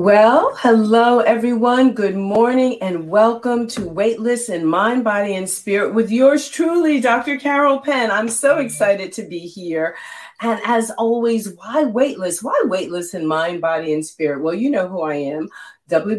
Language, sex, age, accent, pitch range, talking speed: English, female, 40-59, American, 190-265 Hz, 165 wpm